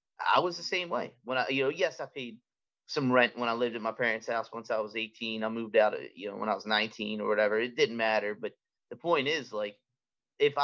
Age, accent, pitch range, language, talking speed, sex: 30-49, American, 110-165 Hz, English, 260 wpm, male